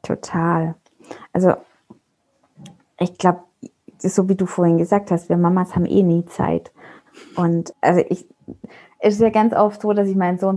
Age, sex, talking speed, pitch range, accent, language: 20-39, female, 160 wpm, 185-215 Hz, German, German